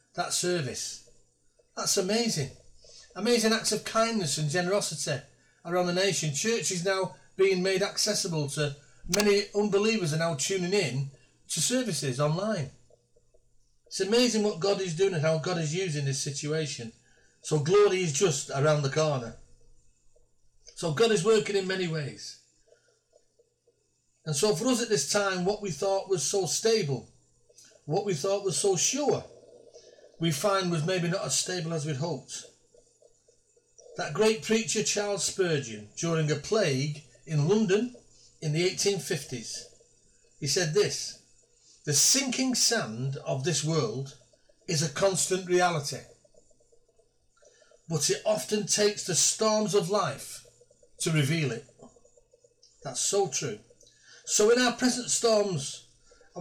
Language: English